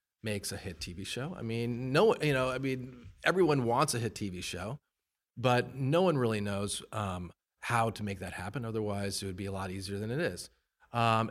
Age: 30-49